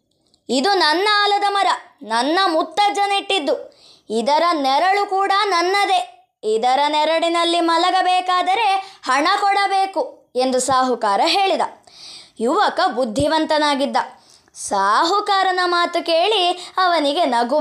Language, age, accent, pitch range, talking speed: Kannada, 20-39, native, 300-385 Hz, 90 wpm